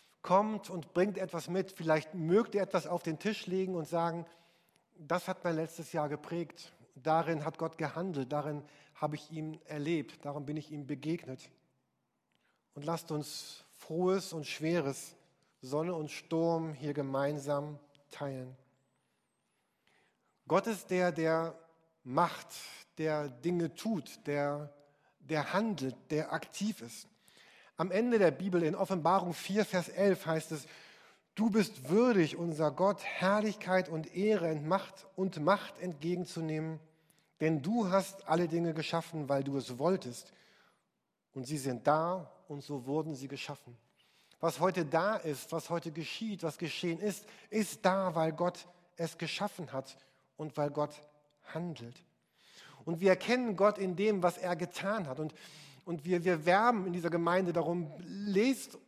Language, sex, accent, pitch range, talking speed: German, male, German, 155-190 Hz, 150 wpm